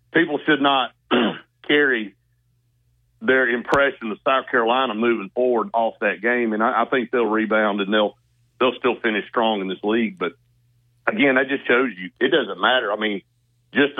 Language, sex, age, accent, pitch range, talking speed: English, male, 40-59, American, 110-130 Hz, 175 wpm